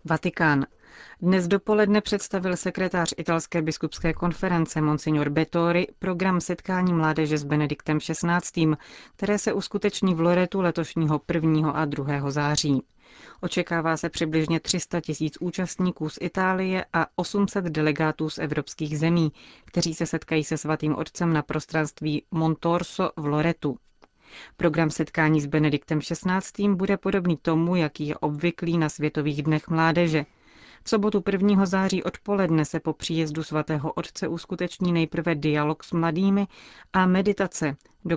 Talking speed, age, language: 130 wpm, 30-49, Czech